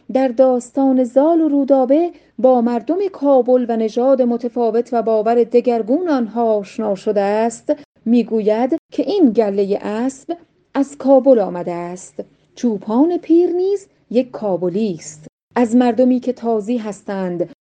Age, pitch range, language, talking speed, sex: 40-59, 210-270 Hz, Persian, 125 wpm, female